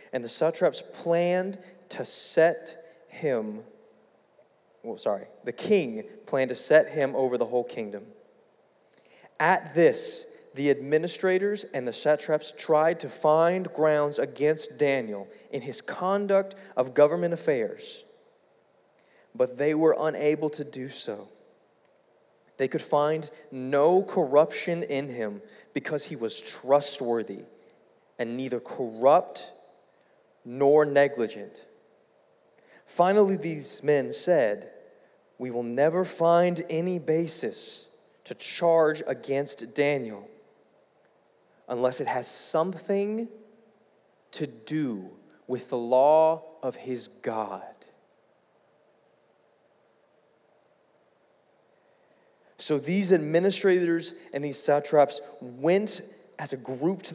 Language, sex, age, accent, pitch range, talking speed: English, male, 20-39, American, 140-195 Hz, 105 wpm